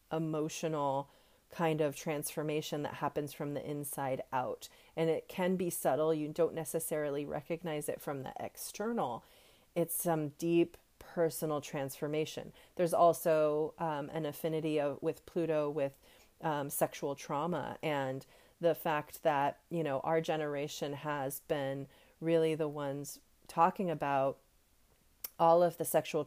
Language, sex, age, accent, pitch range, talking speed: English, female, 40-59, American, 145-165 Hz, 135 wpm